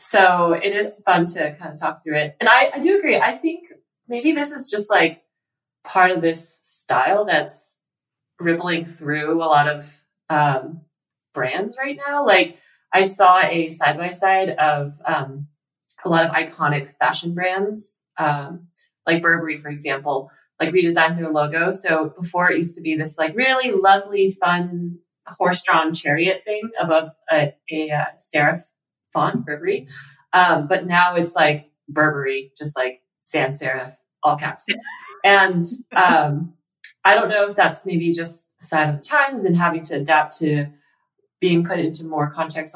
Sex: female